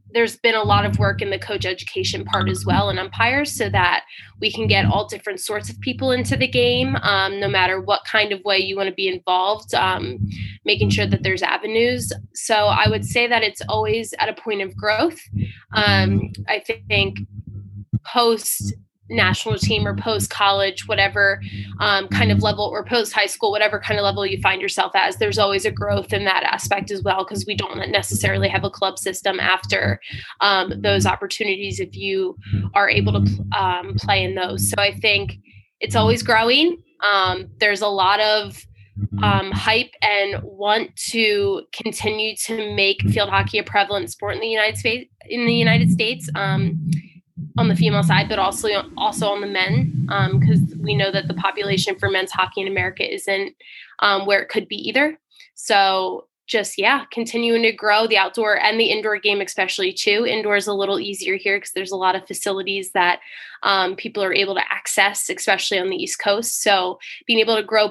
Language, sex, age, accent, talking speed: English, female, 20-39, American, 195 wpm